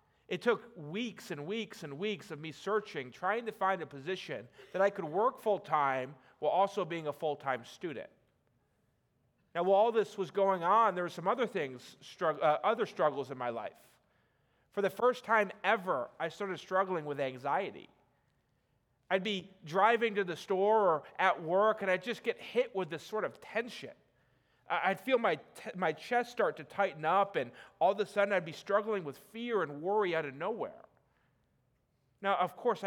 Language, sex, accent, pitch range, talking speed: English, male, American, 150-210 Hz, 185 wpm